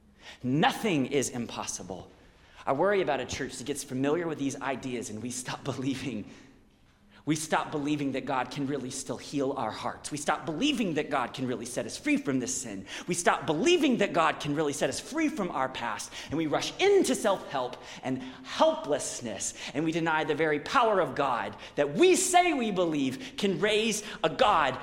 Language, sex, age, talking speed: English, male, 30-49, 190 wpm